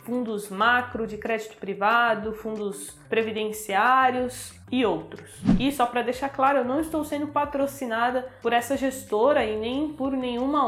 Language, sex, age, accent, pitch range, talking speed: Portuguese, female, 20-39, Brazilian, 230-280 Hz, 145 wpm